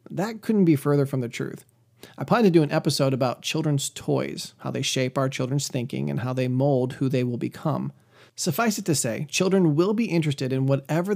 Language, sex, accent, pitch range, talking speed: English, male, American, 130-160 Hz, 215 wpm